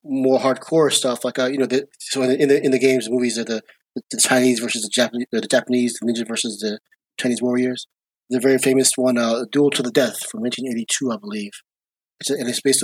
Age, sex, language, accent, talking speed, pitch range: 30-49, male, English, American, 235 wpm, 115-135 Hz